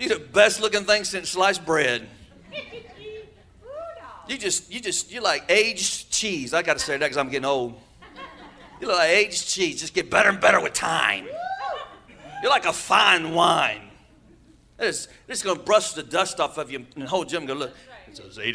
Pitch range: 170-260 Hz